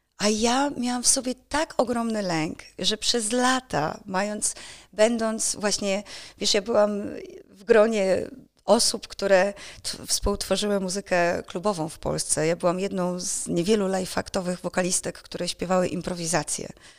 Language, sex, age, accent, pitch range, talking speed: Polish, female, 30-49, native, 190-240 Hz, 135 wpm